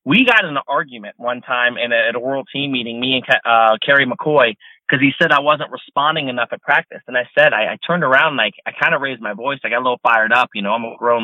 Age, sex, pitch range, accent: 30-49, male, 130-165 Hz, American